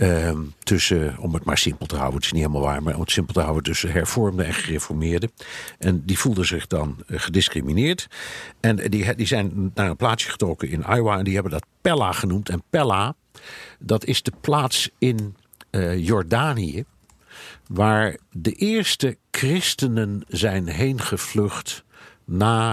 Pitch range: 85-110 Hz